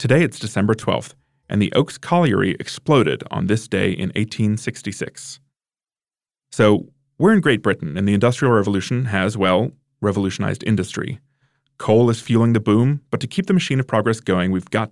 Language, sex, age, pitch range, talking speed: English, male, 30-49, 100-140 Hz, 170 wpm